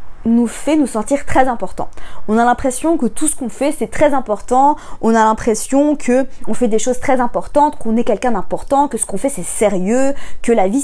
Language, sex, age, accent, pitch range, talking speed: French, female, 20-39, French, 220-290 Hz, 215 wpm